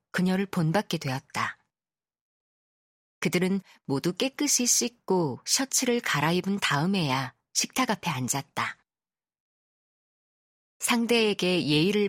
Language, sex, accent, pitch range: Korean, female, native, 145-220 Hz